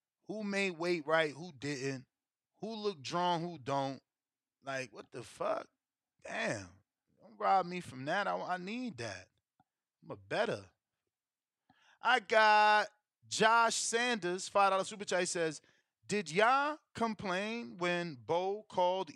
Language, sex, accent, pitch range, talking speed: English, male, American, 150-205 Hz, 135 wpm